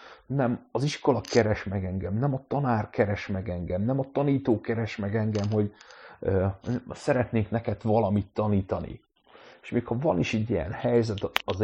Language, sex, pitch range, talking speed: Hungarian, male, 100-115 Hz, 170 wpm